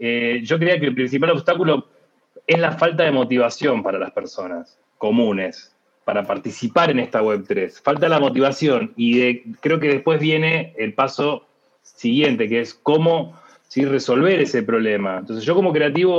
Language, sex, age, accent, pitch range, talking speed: English, male, 30-49, Argentinian, 125-160 Hz, 155 wpm